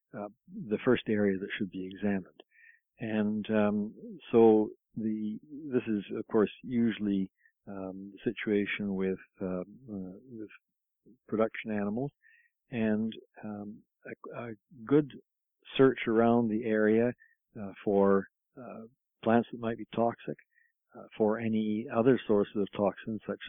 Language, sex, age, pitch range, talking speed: English, male, 60-79, 100-120 Hz, 130 wpm